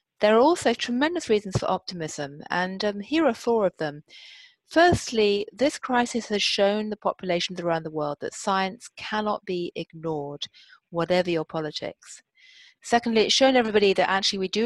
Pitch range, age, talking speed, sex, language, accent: 175-230 Hz, 30-49, 165 wpm, female, English, British